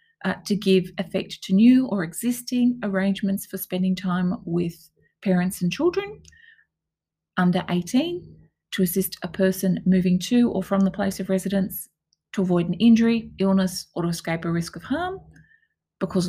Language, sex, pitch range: English, female, 175-205 Hz